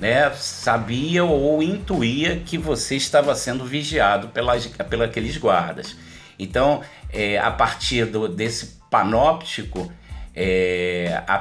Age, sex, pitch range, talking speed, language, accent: 50-69, male, 105-150 Hz, 115 wpm, Portuguese, Brazilian